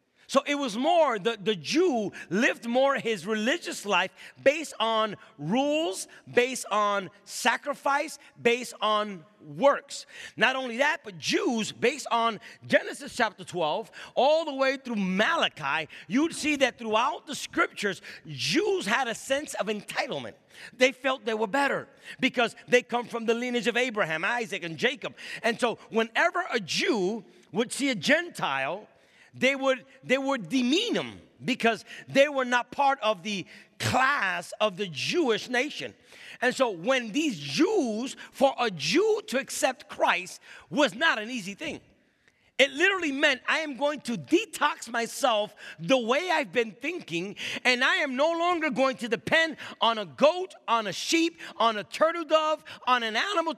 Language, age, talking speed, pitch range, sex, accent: English, 40-59, 160 wpm, 225-295 Hz, male, American